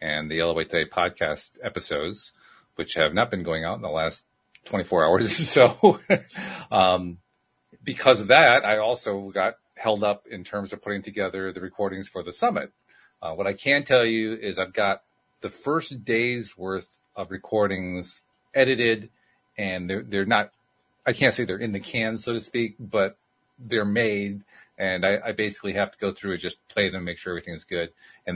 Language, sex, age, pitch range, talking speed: English, male, 40-59, 90-115 Hz, 190 wpm